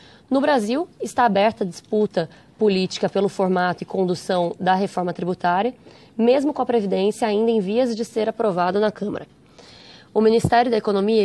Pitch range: 190-230 Hz